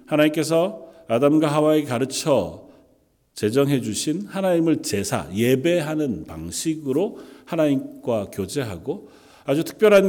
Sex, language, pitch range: male, Korean, 125-175 Hz